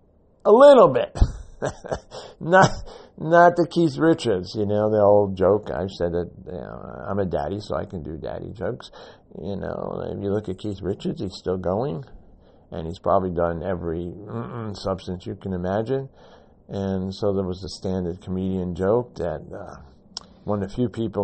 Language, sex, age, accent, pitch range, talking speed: English, male, 50-69, American, 90-110 Hz, 180 wpm